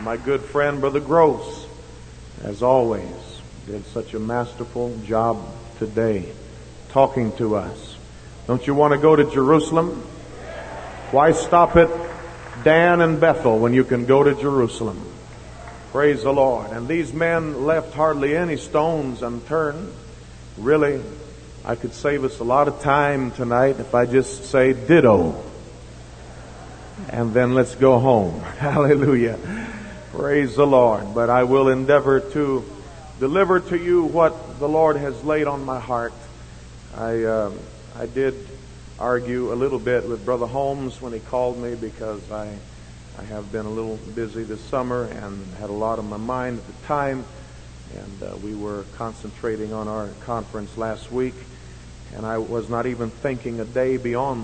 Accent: American